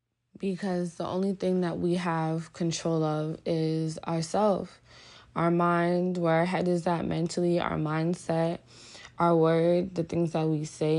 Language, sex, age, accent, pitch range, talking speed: English, female, 20-39, American, 150-170 Hz, 155 wpm